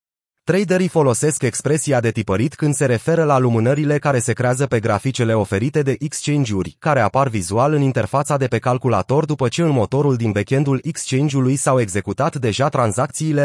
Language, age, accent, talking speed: Romanian, 30-49, native, 170 wpm